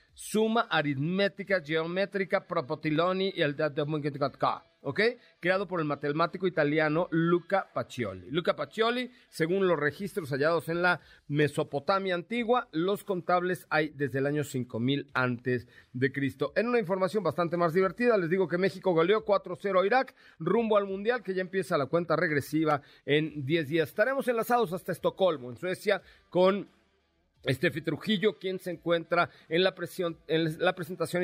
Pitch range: 150-190 Hz